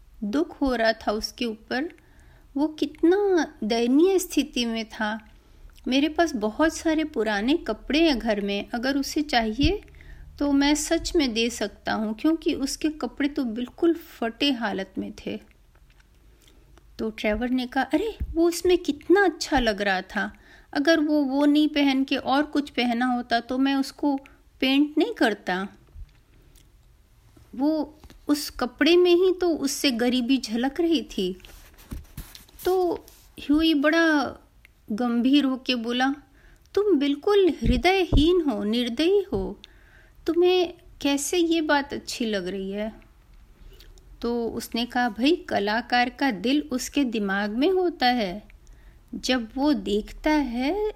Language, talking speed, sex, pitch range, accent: Hindi, 135 wpm, female, 240-320 Hz, native